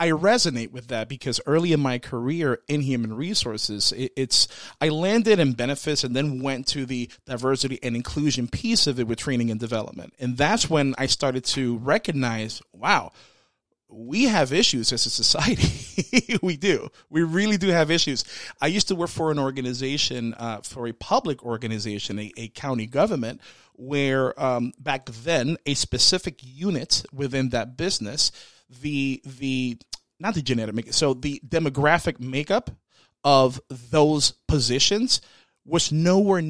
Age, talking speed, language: 30-49, 155 wpm, English